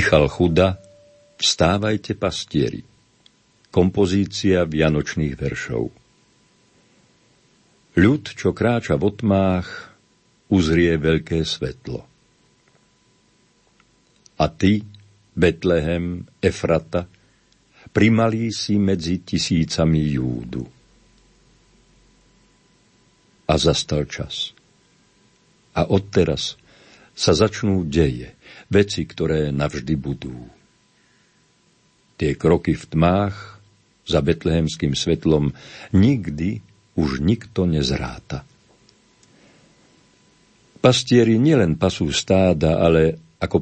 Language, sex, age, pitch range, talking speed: Slovak, male, 60-79, 80-100 Hz, 75 wpm